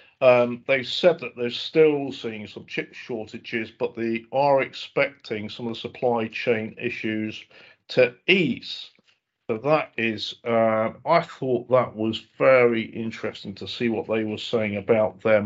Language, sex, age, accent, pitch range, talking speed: English, male, 50-69, British, 115-135 Hz, 155 wpm